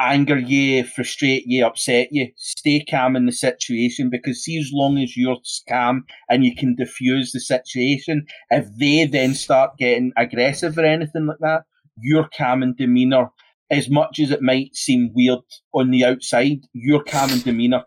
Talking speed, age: 175 wpm, 30-49